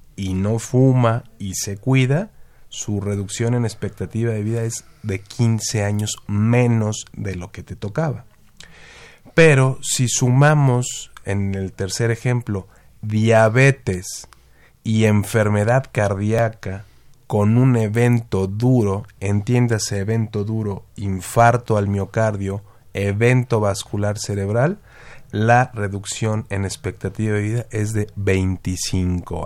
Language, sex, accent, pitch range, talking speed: Spanish, male, Mexican, 100-120 Hz, 110 wpm